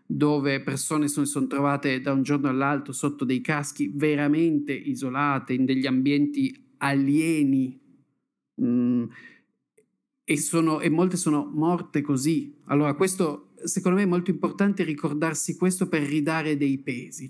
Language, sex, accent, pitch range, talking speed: Italian, male, native, 135-165 Hz, 140 wpm